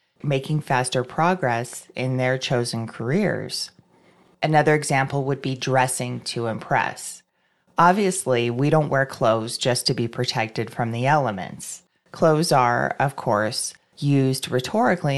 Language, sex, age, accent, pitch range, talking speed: English, female, 30-49, American, 130-170 Hz, 125 wpm